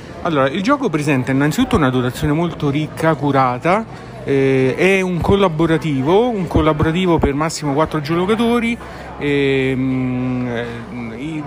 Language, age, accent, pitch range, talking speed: Italian, 40-59, native, 135-165 Hz, 110 wpm